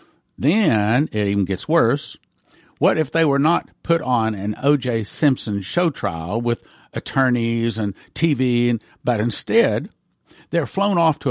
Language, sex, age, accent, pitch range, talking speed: English, male, 50-69, American, 115-155 Hz, 145 wpm